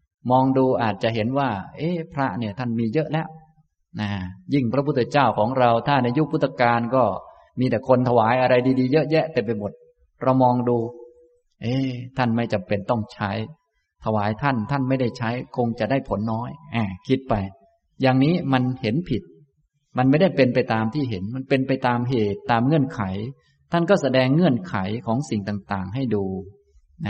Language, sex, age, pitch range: Thai, male, 20-39, 105-135 Hz